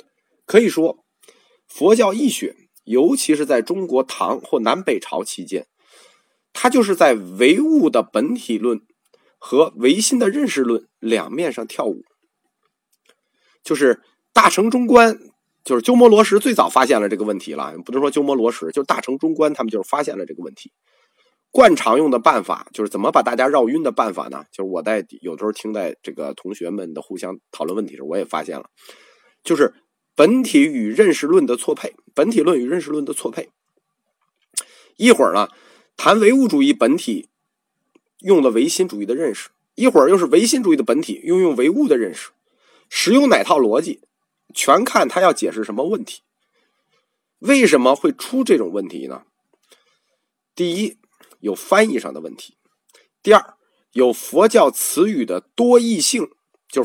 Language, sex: Chinese, male